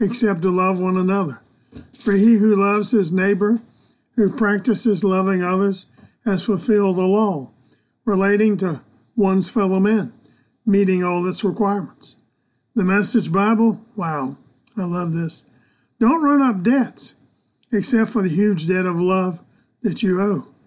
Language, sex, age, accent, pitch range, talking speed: English, male, 50-69, American, 180-215 Hz, 140 wpm